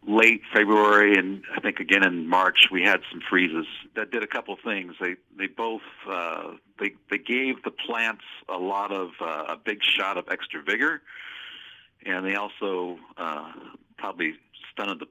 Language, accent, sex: English, American, male